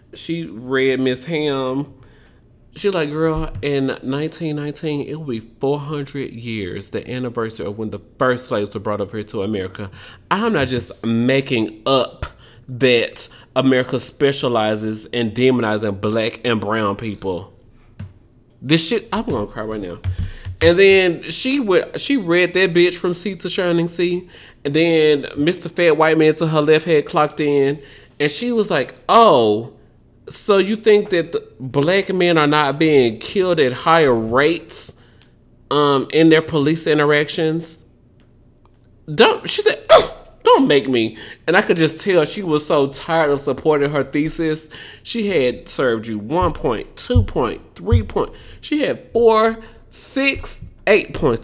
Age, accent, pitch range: 20-39, American, 115-160 Hz